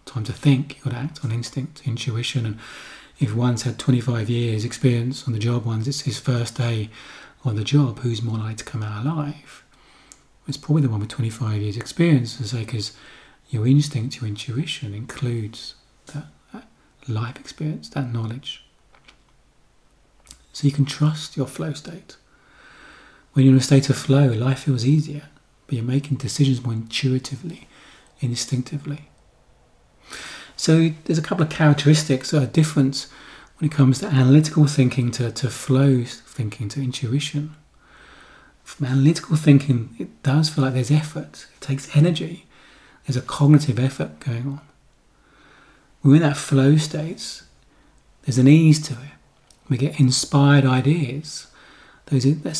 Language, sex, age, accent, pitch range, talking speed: English, male, 30-49, British, 125-145 Hz, 155 wpm